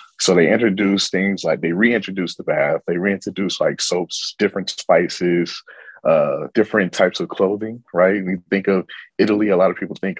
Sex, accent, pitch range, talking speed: male, American, 85-95 Hz, 175 wpm